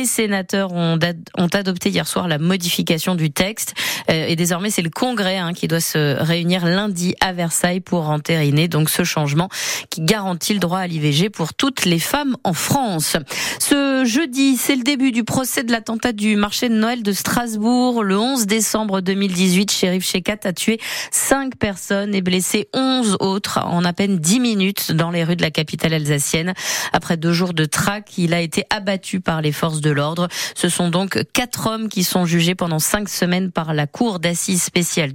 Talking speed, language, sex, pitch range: 190 wpm, French, female, 170-220 Hz